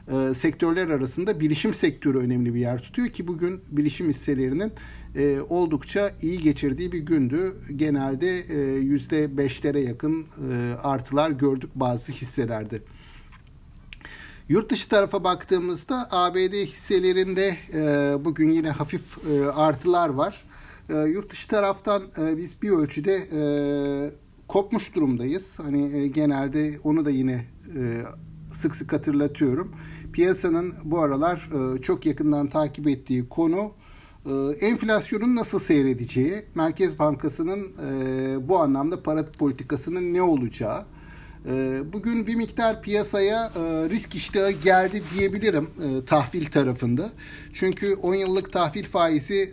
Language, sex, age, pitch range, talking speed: Turkish, male, 60-79, 140-185 Hz, 125 wpm